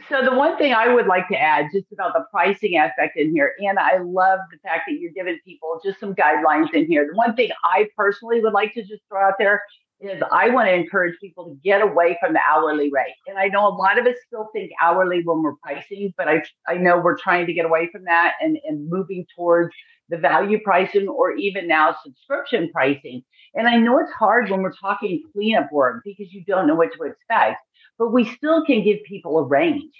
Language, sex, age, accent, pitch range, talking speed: English, female, 50-69, American, 175-245 Hz, 230 wpm